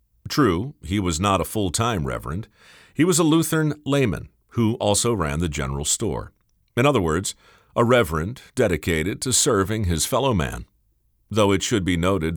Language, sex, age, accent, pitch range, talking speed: English, male, 50-69, American, 80-125 Hz, 170 wpm